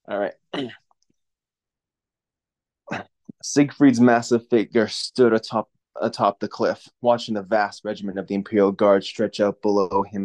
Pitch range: 100-115 Hz